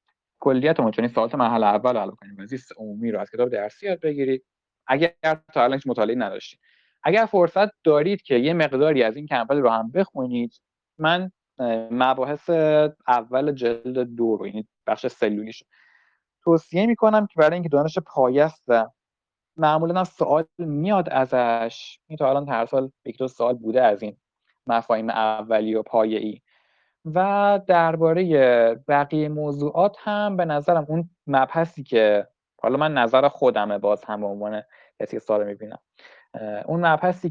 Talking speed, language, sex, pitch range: 155 wpm, Persian, male, 115-160 Hz